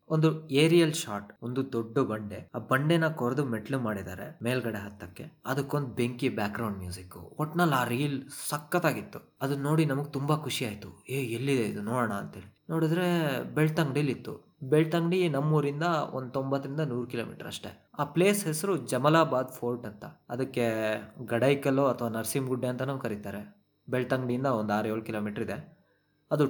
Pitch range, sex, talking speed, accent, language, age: 110-145 Hz, male, 140 wpm, native, Kannada, 20-39